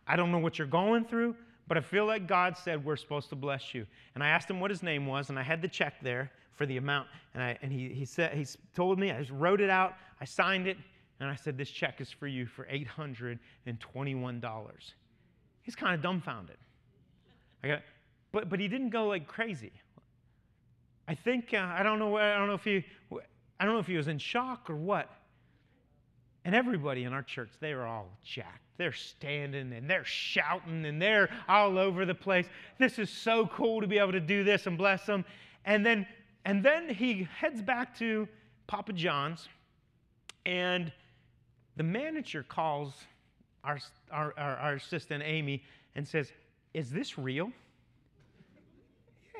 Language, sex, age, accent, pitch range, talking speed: English, male, 30-49, American, 135-195 Hz, 190 wpm